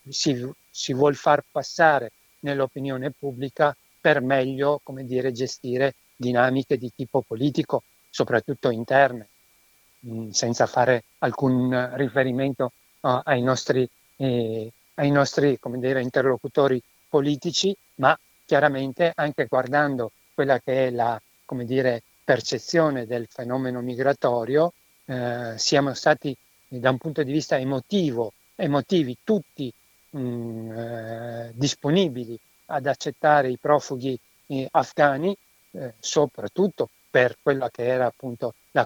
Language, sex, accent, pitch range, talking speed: Italian, male, native, 125-145 Hz, 115 wpm